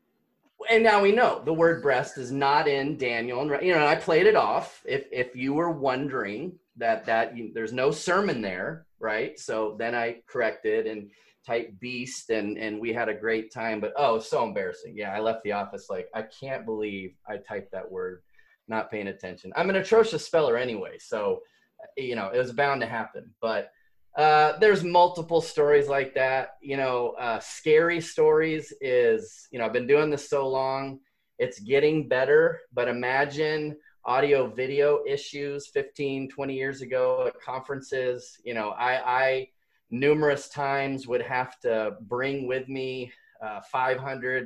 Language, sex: English, male